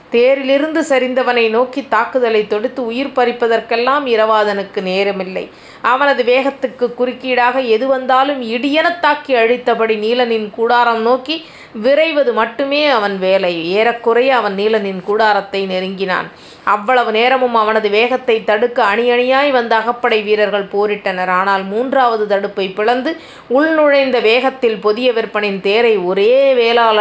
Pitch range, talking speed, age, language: 210-250 Hz, 105 wpm, 30-49, Tamil